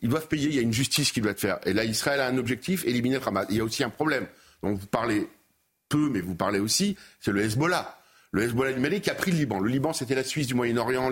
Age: 50-69